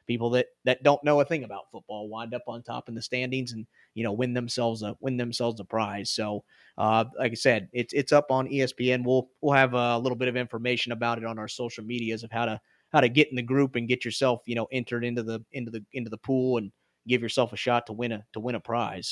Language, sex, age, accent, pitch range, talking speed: English, male, 30-49, American, 120-145 Hz, 265 wpm